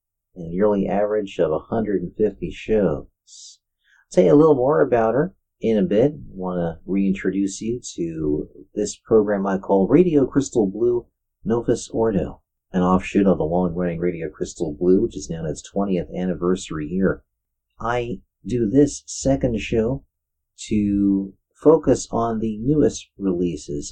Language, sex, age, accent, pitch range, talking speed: English, male, 40-59, American, 90-115 Hz, 150 wpm